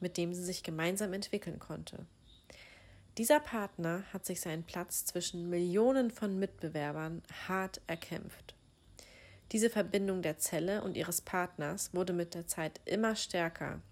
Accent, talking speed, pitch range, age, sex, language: German, 140 wpm, 160-195 Hz, 30-49, female, German